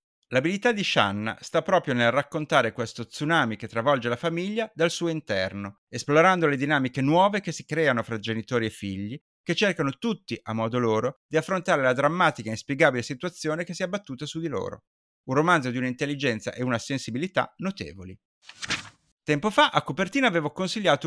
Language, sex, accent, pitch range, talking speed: Italian, male, native, 120-190 Hz, 175 wpm